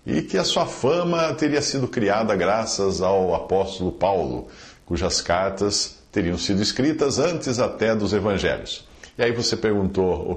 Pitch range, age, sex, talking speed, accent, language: 85-115 Hz, 50-69, male, 150 wpm, Brazilian, English